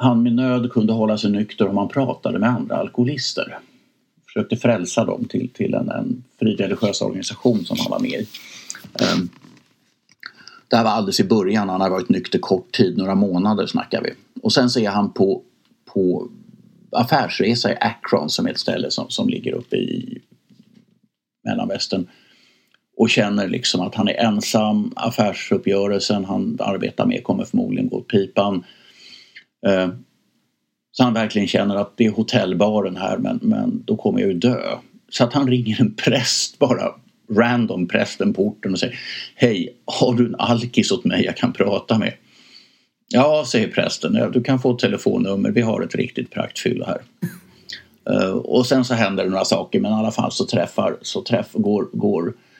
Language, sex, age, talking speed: English, male, 50-69, 170 wpm